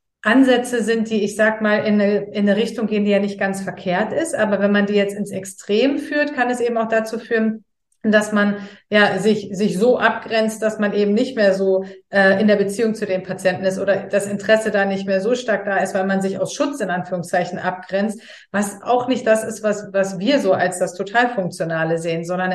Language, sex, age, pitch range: German, female, 30-49, 185-220 Hz